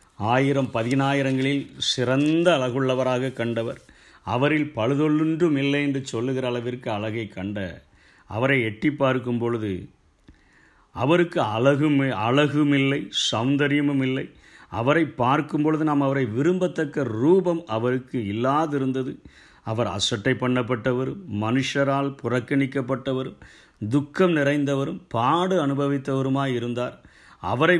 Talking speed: 85 wpm